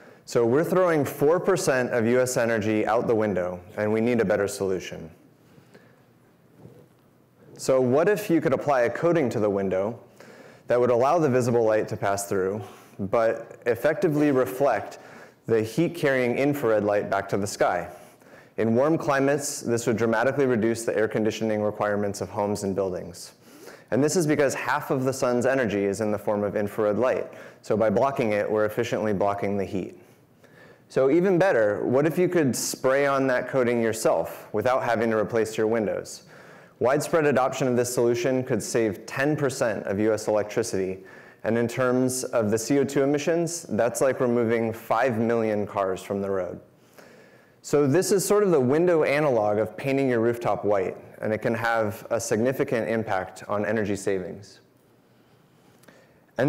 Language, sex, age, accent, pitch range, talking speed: English, male, 30-49, American, 105-135 Hz, 165 wpm